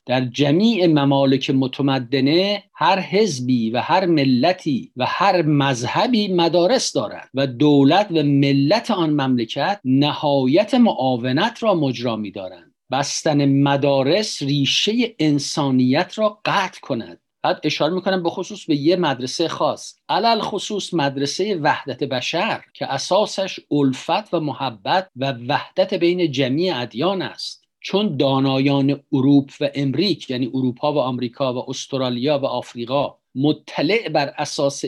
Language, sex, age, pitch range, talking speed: Persian, male, 50-69, 135-170 Hz, 125 wpm